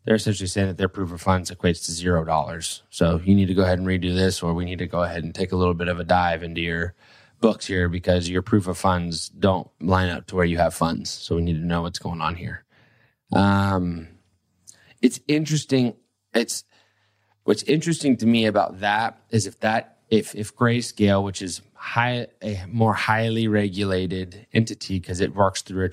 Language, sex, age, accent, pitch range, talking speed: English, male, 20-39, American, 90-110 Hz, 205 wpm